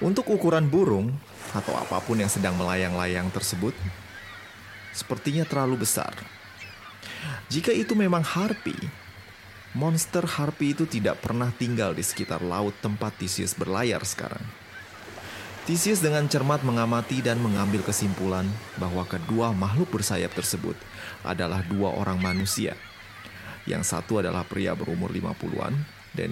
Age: 30-49